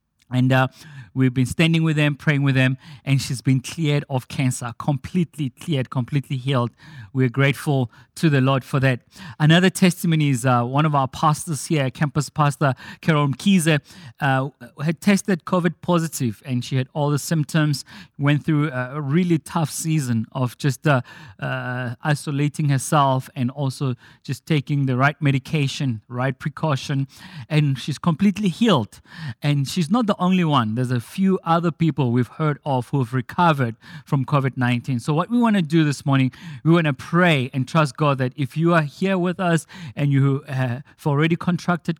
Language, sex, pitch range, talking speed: English, male, 130-160 Hz, 175 wpm